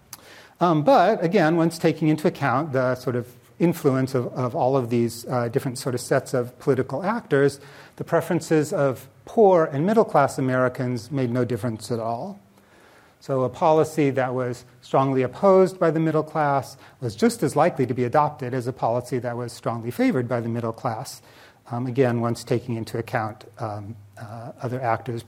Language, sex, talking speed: English, male, 180 wpm